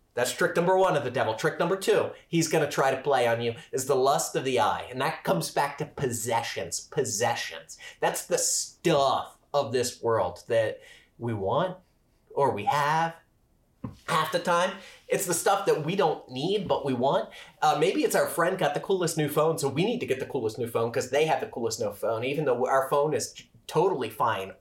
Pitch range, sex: 145-200 Hz, male